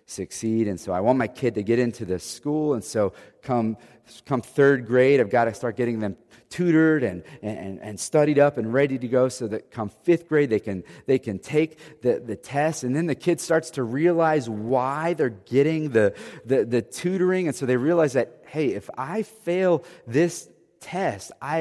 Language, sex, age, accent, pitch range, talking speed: English, male, 30-49, American, 130-195 Hz, 205 wpm